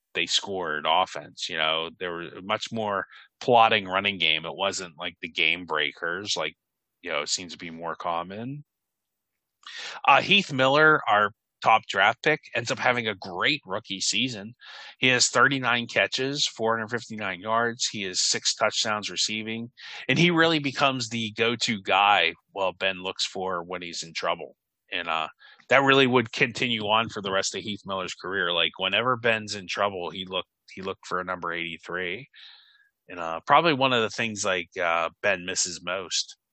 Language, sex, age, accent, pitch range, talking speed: English, male, 30-49, American, 100-130 Hz, 175 wpm